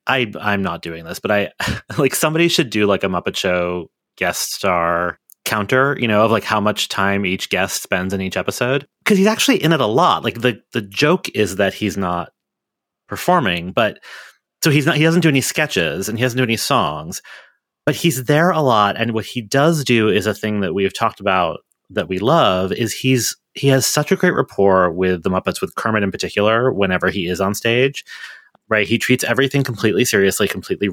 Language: English